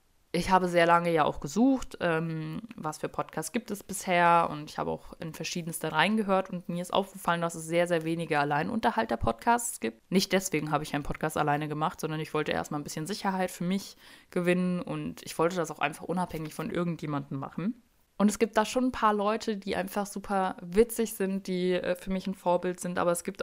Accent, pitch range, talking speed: German, 165-195 Hz, 220 wpm